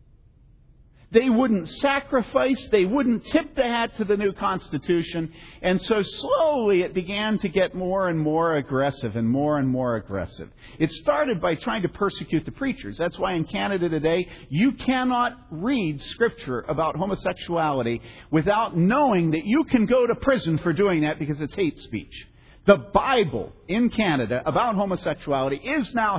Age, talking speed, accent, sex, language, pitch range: 50-69, 160 wpm, American, male, English, 140-215 Hz